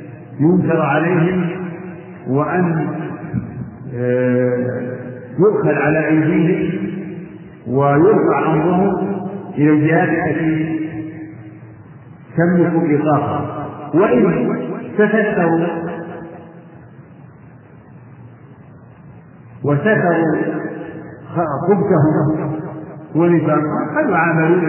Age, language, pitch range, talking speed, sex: 50-69, Arabic, 140-165 Hz, 45 wpm, male